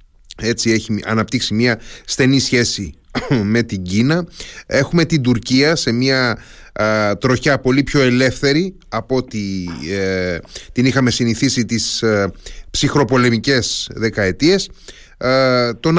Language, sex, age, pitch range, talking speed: Greek, male, 30-49, 110-145 Hz, 100 wpm